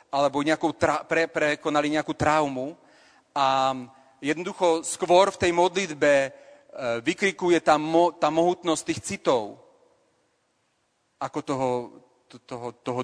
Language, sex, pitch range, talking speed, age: Slovak, male, 140-170 Hz, 110 wpm, 40-59